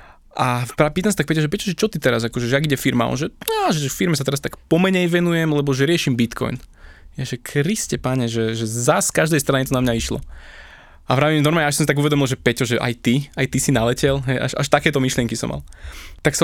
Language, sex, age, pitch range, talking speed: Slovak, male, 20-39, 120-150 Hz, 255 wpm